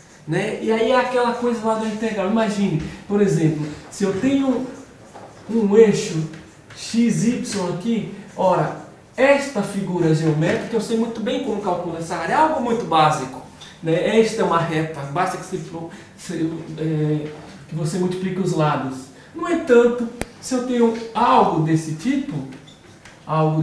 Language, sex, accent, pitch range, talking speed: Portuguese, male, Brazilian, 165-230 Hz, 145 wpm